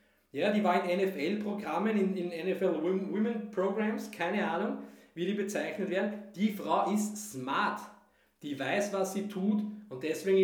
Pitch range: 145-195 Hz